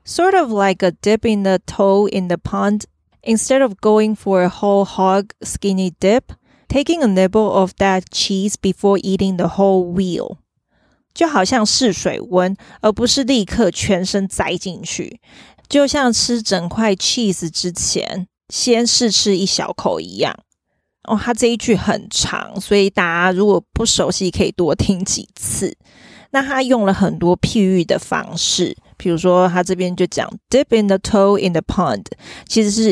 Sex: female